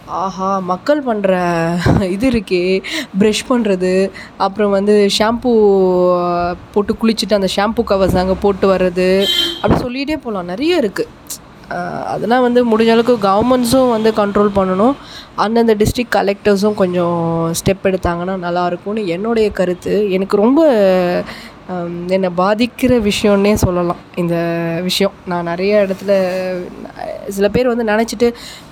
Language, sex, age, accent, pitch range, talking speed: Tamil, female, 20-39, native, 180-220 Hz, 115 wpm